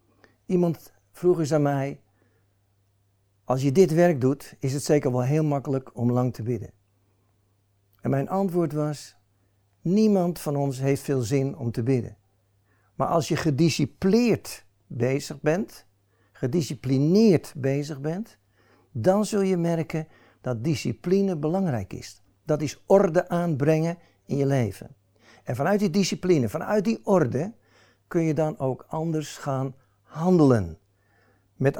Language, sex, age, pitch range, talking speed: Dutch, male, 60-79, 115-170 Hz, 135 wpm